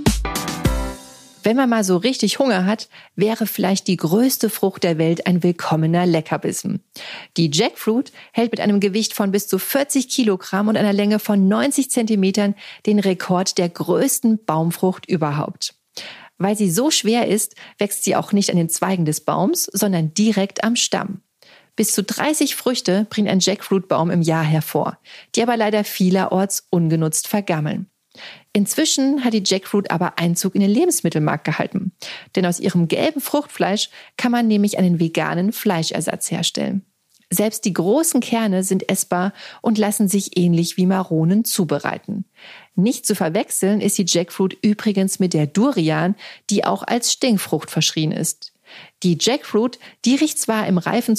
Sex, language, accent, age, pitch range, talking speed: female, German, German, 40-59, 180-220 Hz, 155 wpm